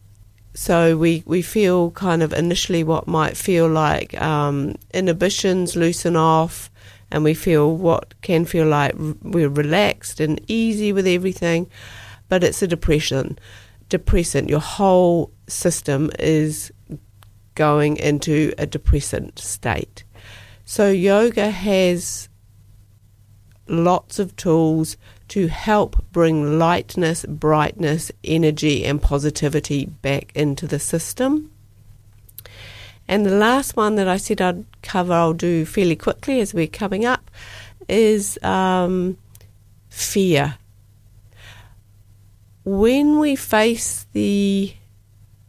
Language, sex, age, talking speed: English, female, 50-69, 110 wpm